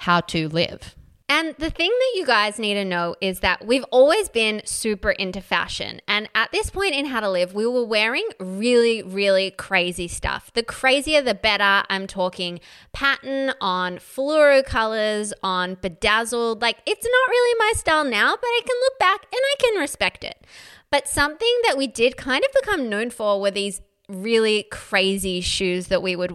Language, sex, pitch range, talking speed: English, female, 190-275 Hz, 185 wpm